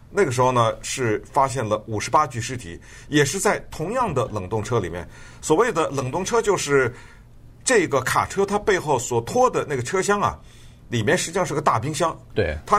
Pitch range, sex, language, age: 110-155 Hz, male, Chinese, 50-69